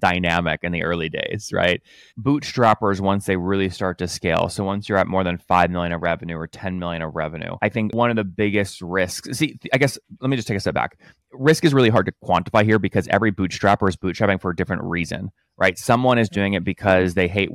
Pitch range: 85-105 Hz